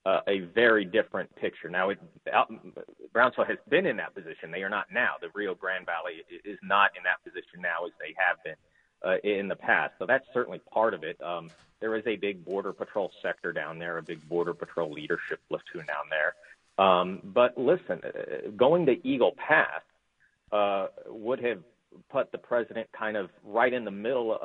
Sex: male